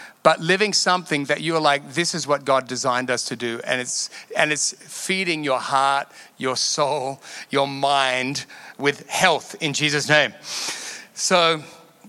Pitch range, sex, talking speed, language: 150-195 Hz, male, 160 wpm, English